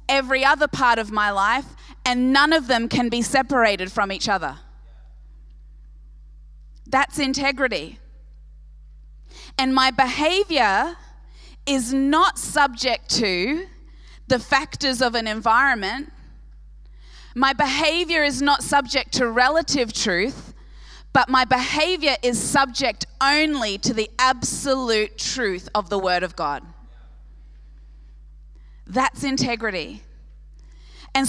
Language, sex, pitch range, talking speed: English, female, 195-270 Hz, 105 wpm